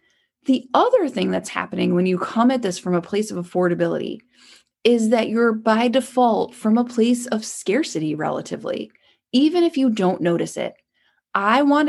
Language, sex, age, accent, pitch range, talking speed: English, female, 20-39, American, 180-240 Hz, 170 wpm